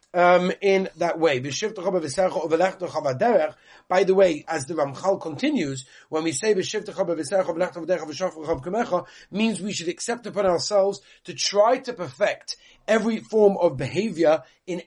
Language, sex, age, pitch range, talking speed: English, male, 40-59, 140-190 Hz, 115 wpm